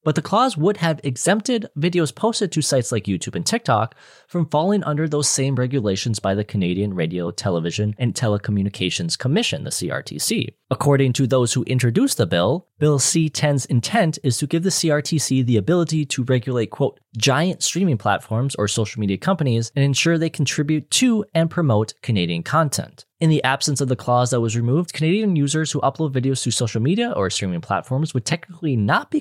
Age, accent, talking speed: 20-39, American, 185 wpm